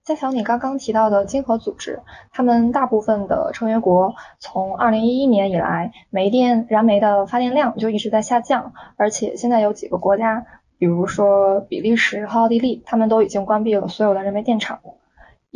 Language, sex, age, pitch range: Chinese, female, 20-39, 200-240 Hz